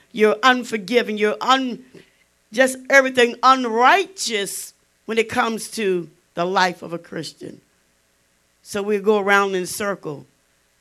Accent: American